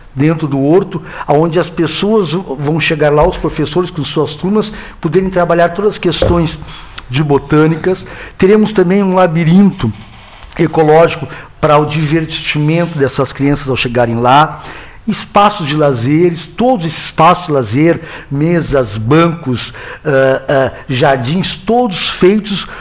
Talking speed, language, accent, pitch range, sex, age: 125 wpm, Portuguese, Brazilian, 150-190 Hz, male, 60-79